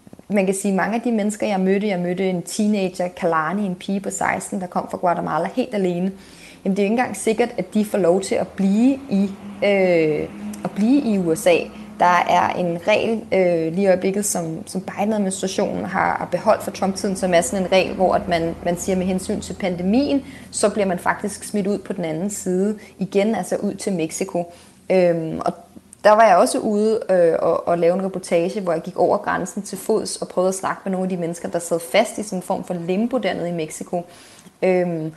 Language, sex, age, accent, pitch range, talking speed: Danish, female, 20-39, native, 175-210 Hz, 220 wpm